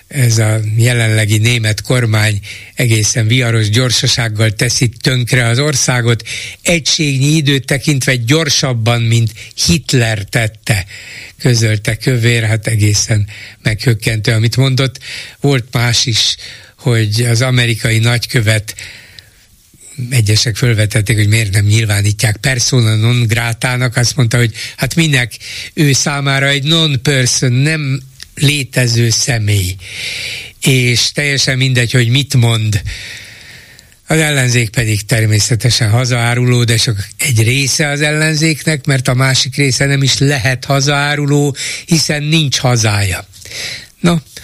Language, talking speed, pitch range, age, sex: Hungarian, 110 wpm, 110-135 Hz, 60-79, male